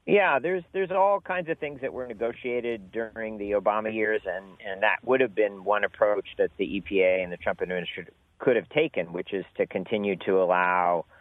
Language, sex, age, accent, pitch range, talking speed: English, male, 50-69, American, 85-115 Hz, 210 wpm